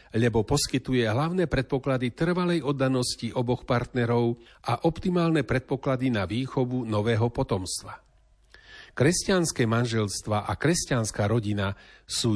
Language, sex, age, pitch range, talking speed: Slovak, male, 40-59, 110-140 Hz, 100 wpm